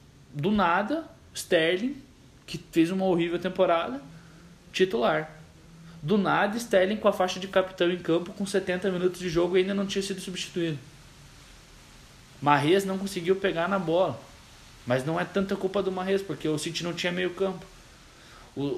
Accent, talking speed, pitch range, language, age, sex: Brazilian, 165 wpm, 115-175 Hz, Portuguese, 20-39, male